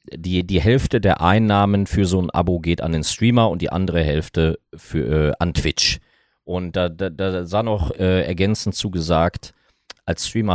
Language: German